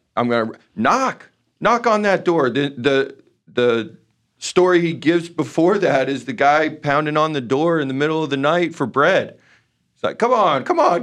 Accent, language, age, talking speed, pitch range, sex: American, English, 40-59, 200 wpm, 130-195 Hz, male